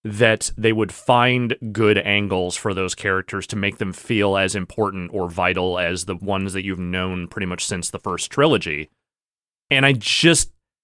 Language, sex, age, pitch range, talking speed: English, male, 30-49, 100-130 Hz, 175 wpm